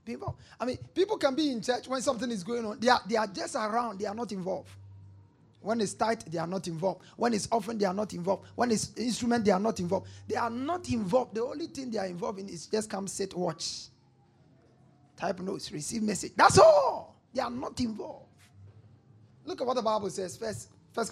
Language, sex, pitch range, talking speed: English, male, 175-255 Hz, 225 wpm